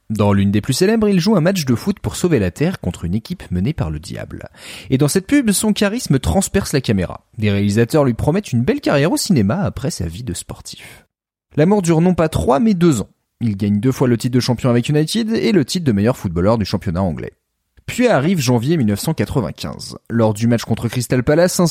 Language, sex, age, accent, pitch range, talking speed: French, male, 30-49, French, 110-180 Hz, 230 wpm